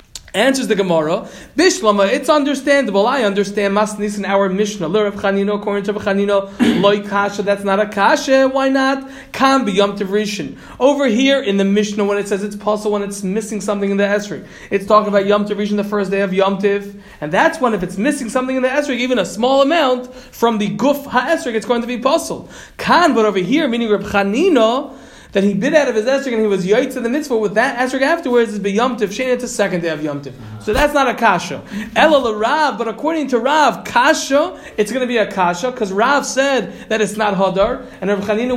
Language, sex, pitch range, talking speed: Polish, male, 200-265 Hz, 215 wpm